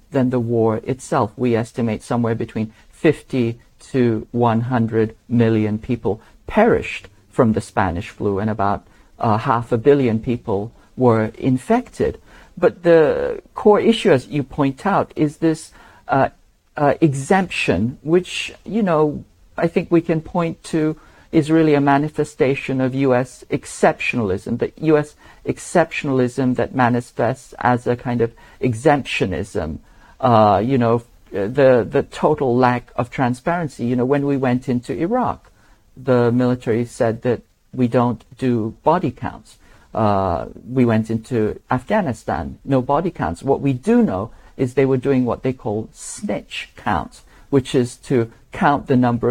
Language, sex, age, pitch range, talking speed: English, male, 50-69, 115-140 Hz, 145 wpm